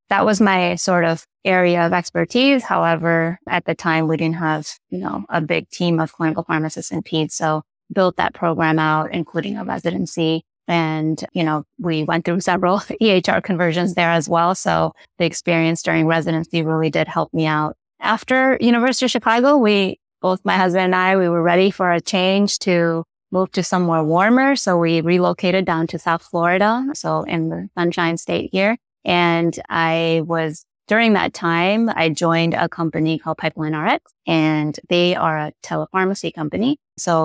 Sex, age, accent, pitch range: female, 20-39, American, 160-185 Hz